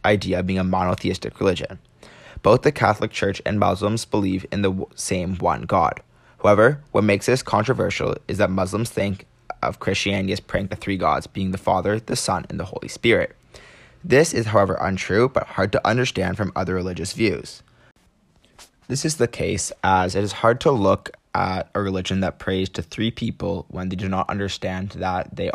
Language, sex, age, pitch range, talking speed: English, male, 20-39, 95-110 Hz, 190 wpm